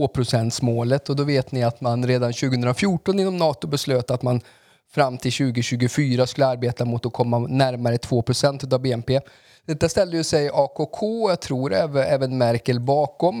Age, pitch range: 30-49, 120-150 Hz